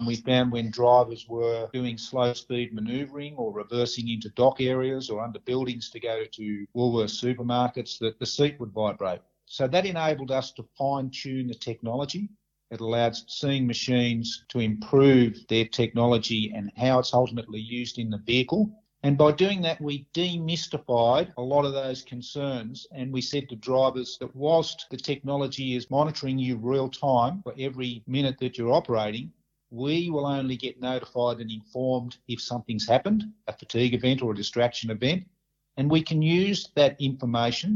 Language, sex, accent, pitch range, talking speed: English, male, Australian, 115-140 Hz, 170 wpm